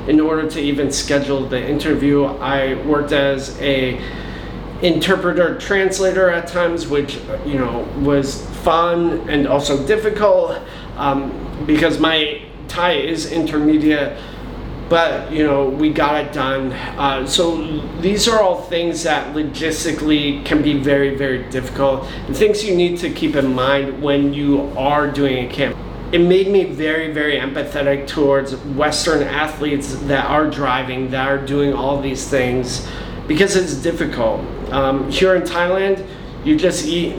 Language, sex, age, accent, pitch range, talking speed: English, male, 30-49, American, 135-160 Hz, 145 wpm